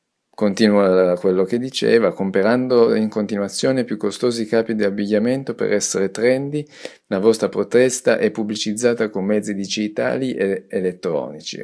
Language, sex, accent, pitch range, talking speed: Italian, male, native, 85-105 Hz, 130 wpm